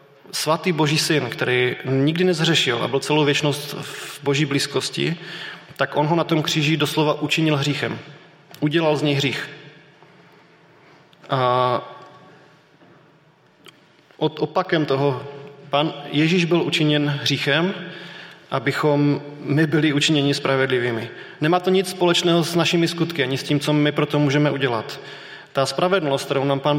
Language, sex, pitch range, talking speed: Czech, male, 140-160 Hz, 135 wpm